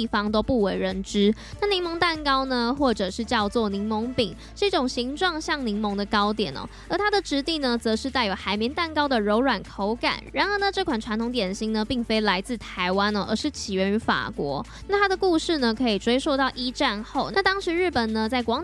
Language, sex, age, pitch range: Chinese, female, 10-29, 215-285 Hz